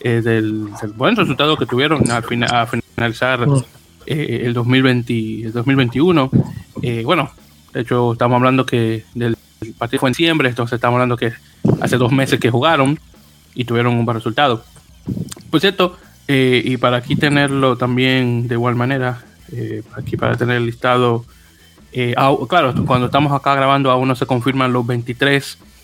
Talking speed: 170 wpm